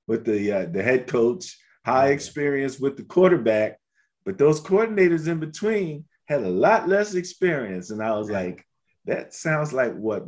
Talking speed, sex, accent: 170 wpm, male, American